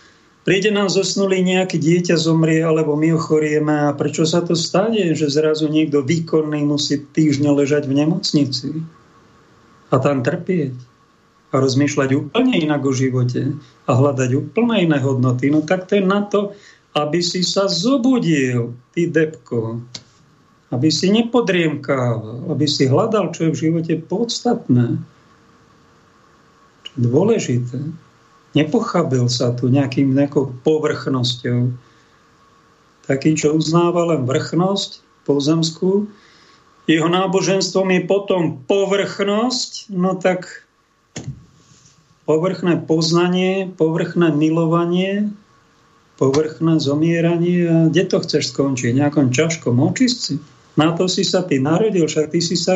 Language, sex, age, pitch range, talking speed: Slovak, male, 50-69, 145-185 Hz, 120 wpm